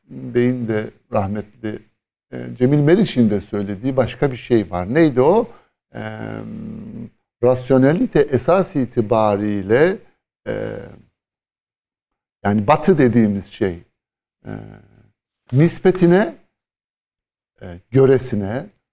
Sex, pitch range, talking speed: male, 105-140 Hz, 70 wpm